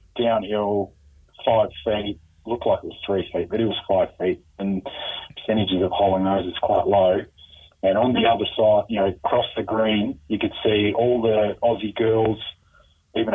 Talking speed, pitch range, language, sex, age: 180 wpm, 100-115 Hz, English, male, 30-49